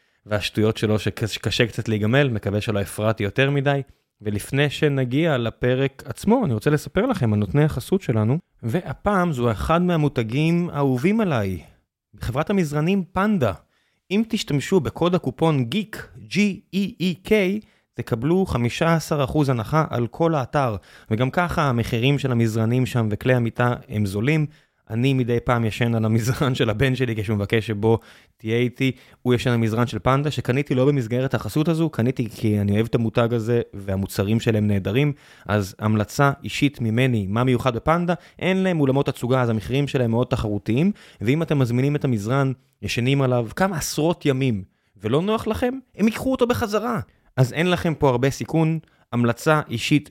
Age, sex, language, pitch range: 20-39, male, Hebrew, 115-155 Hz